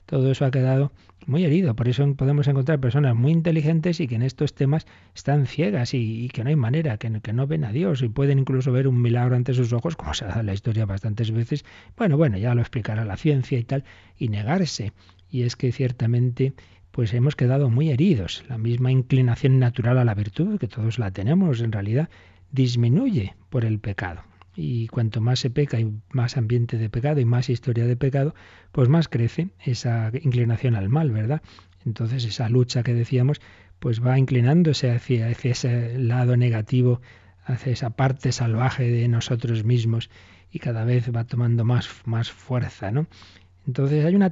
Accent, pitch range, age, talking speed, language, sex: Spanish, 115-135 Hz, 40-59, 190 wpm, Spanish, male